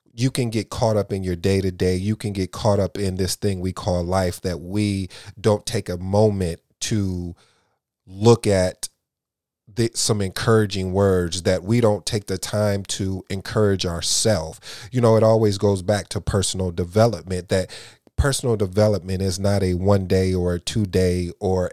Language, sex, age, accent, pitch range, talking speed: English, male, 30-49, American, 90-110 Hz, 175 wpm